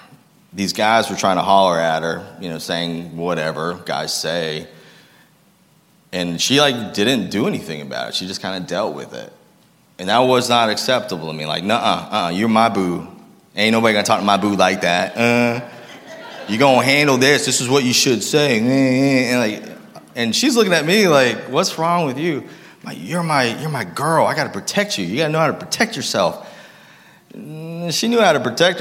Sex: male